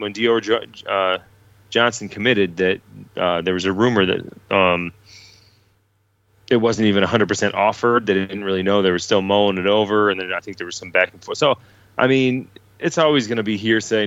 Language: English